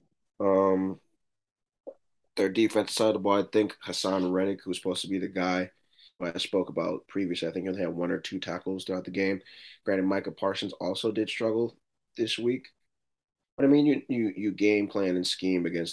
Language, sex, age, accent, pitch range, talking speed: English, male, 20-39, American, 90-115 Hz, 200 wpm